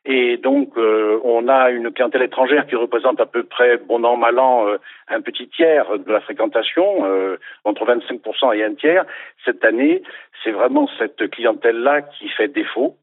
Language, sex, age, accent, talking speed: French, male, 60-79, French, 180 wpm